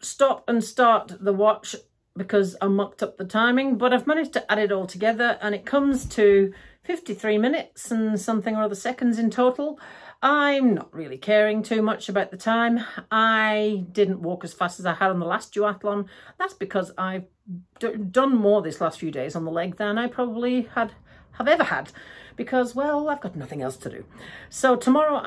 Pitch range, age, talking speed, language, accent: 190-240 Hz, 40-59, 195 wpm, English, British